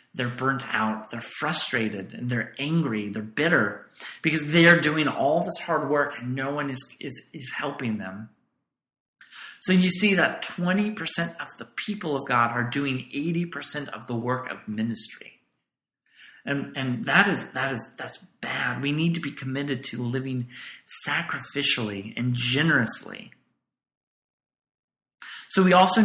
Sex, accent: male, American